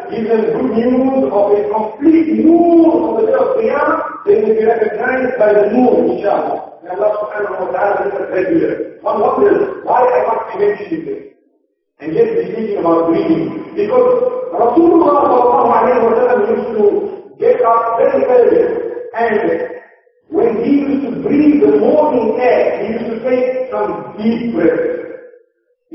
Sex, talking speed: male, 150 wpm